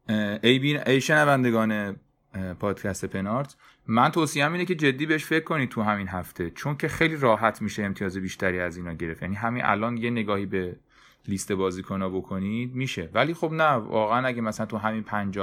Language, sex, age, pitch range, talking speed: Persian, male, 30-49, 95-125 Hz, 185 wpm